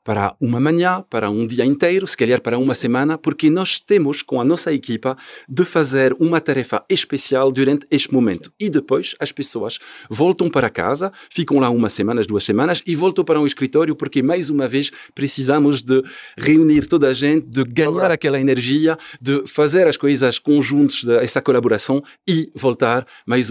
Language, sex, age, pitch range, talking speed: Portuguese, male, 50-69, 115-145 Hz, 180 wpm